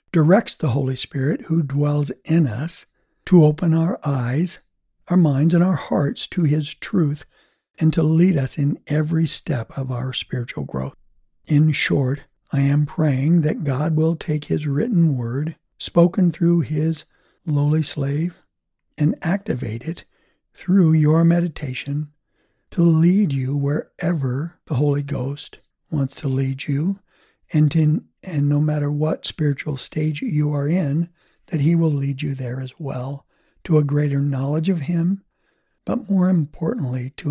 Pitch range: 140-165 Hz